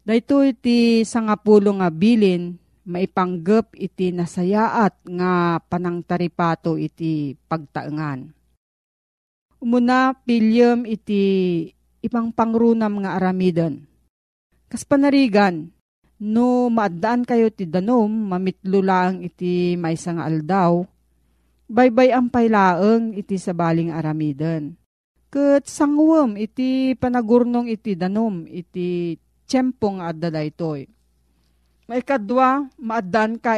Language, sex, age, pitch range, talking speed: Filipino, female, 40-59, 170-230 Hz, 90 wpm